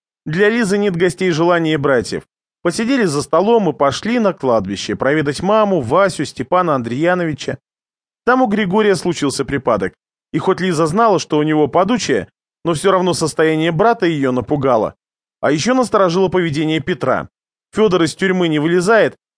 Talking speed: 150 wpm